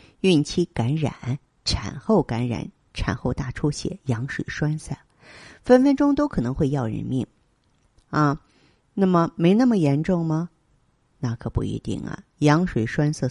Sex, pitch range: female, 120-155 Hz